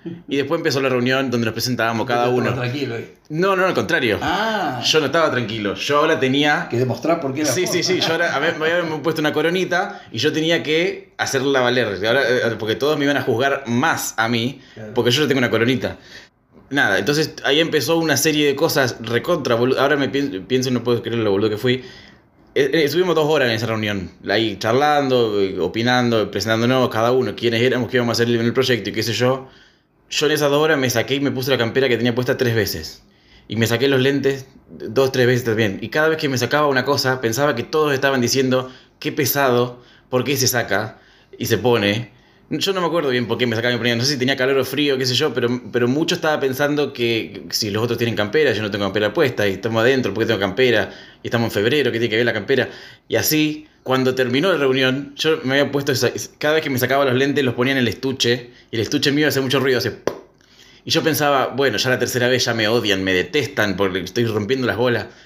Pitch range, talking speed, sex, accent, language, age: 115-145 Hz, 225 wpm, male, Argentinian, Spanish, 20-39